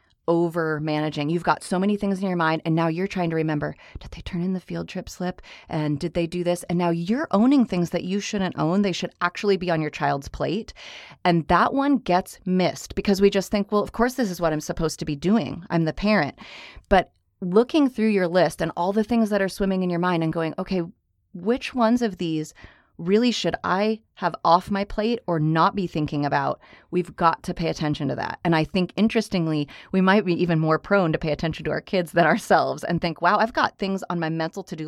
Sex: female